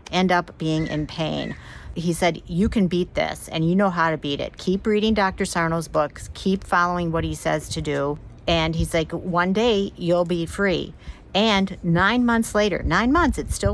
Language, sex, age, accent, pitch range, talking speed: English, female, 50-69, American, 155-185 Hz, 200 wpm